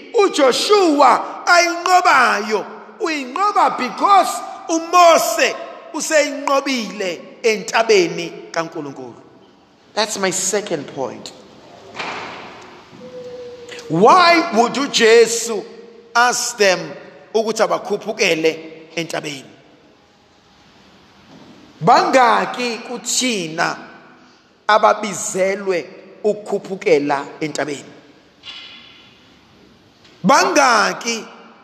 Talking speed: 65 wpm